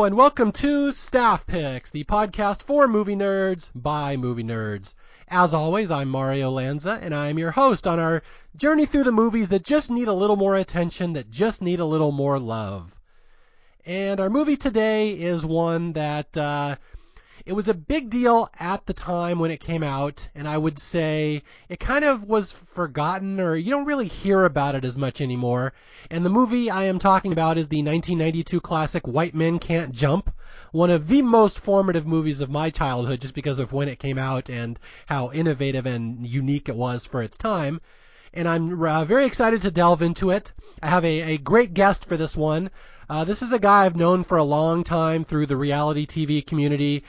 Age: 30-49